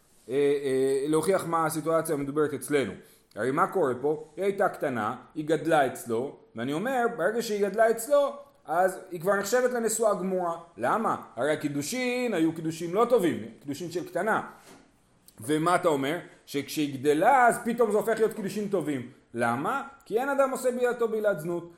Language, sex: Hebrew, male